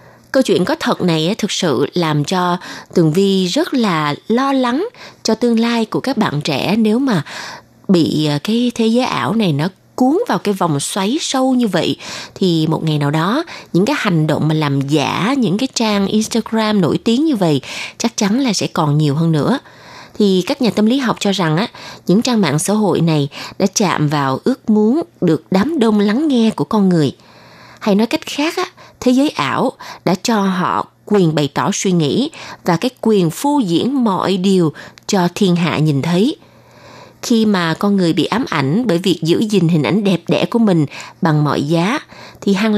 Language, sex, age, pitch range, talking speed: Vietnamese, female, 20-39, 165-235 Hz, 205 wpm